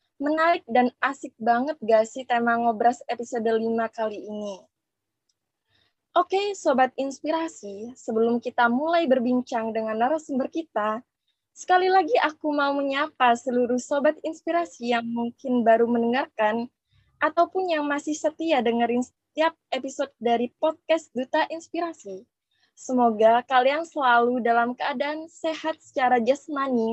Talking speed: 120 wpm